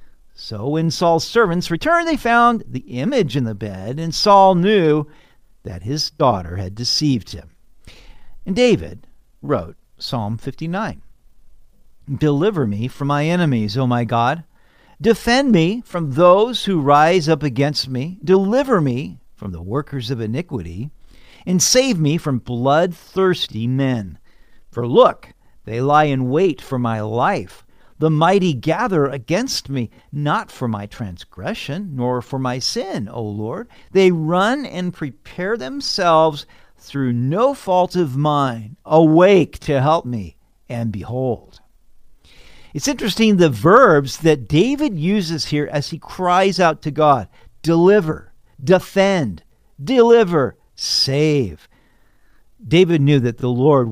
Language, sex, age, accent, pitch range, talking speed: English, male, 50-69, American, 120-180 Hz, 130 wpm